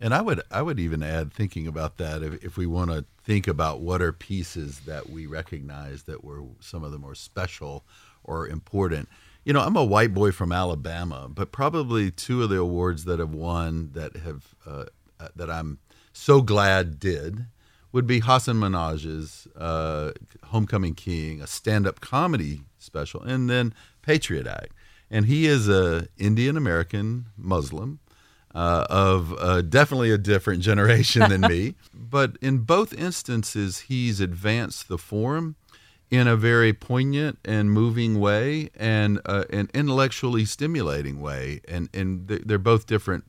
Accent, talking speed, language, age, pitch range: American, 155 wpm, English, 50-69, 85-115 Hz